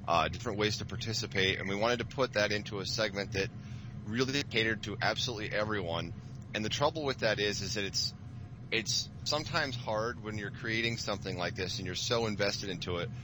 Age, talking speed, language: 30-49, 200 wpm, English